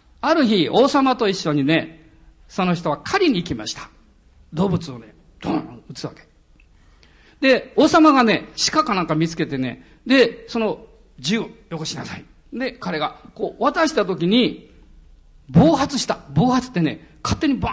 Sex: male